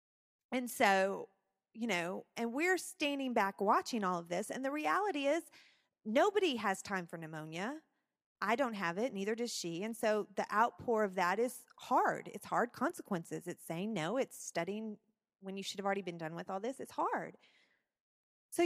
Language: English